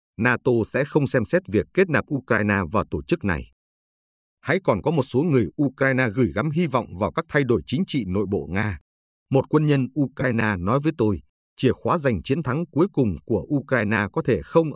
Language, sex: Vietnamese, male